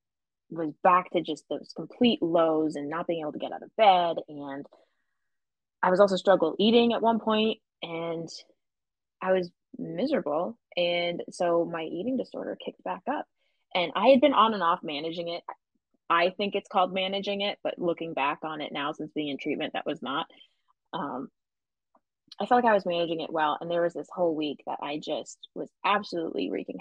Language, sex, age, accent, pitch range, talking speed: English, female, 20-39, American, 155-200 Hz, 195 wpm